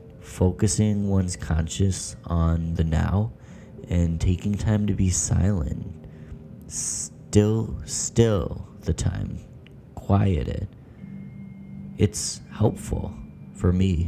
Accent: American